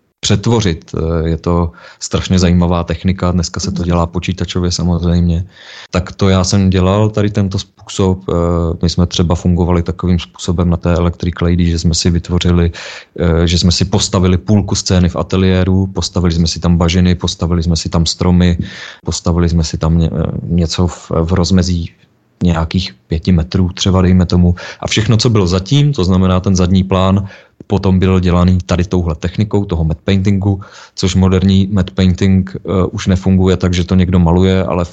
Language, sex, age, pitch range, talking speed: Czech, male, 30-49, 85-95 Hz, 165 wpm